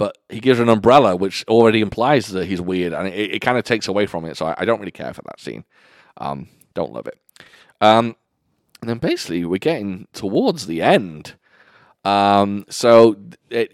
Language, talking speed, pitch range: English, 200 wpm, 95-120 Hz